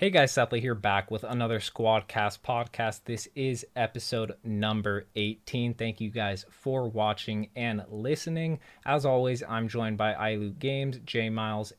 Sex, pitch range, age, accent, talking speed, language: male, 110-155 Hz, 20-39, American, 155 wpm, English